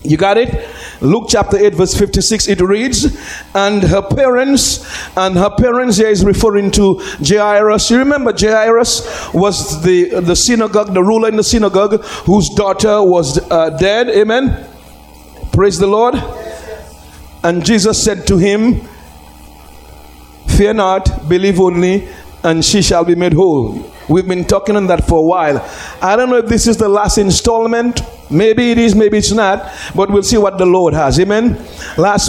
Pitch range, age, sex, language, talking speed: 160-220 Hz, 50-69, male, English, 165 wpm